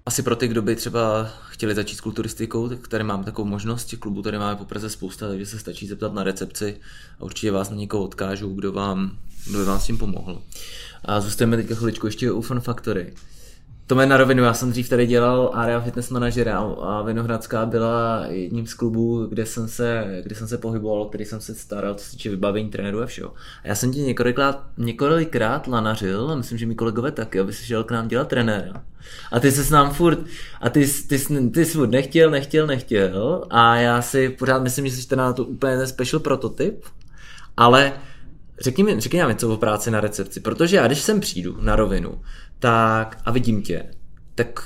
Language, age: Czech, 20-39